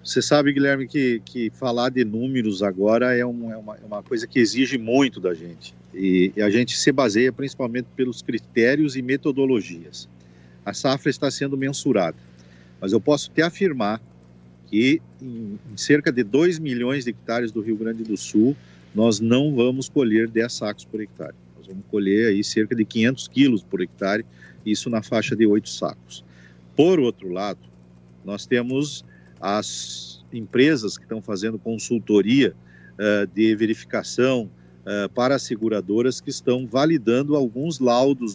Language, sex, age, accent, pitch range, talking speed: Portuguese, male, 50-69, Brazilian, 95-130 Hz, 160 wpm